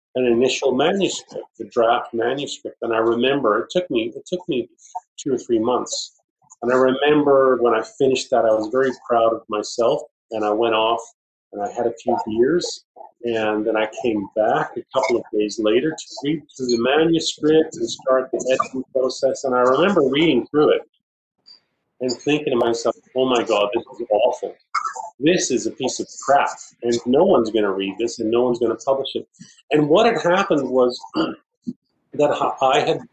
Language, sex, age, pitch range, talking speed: English, male, 30-49, 115-175 Hz, 190 wpm